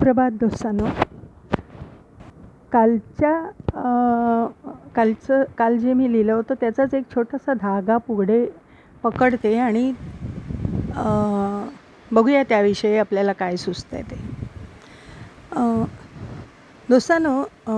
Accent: native